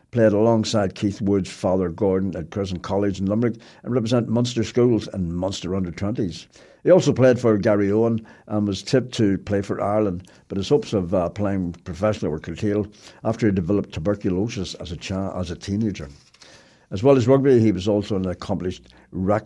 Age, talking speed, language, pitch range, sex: 60-79, 185 wpm, English, 90-115 Hz, male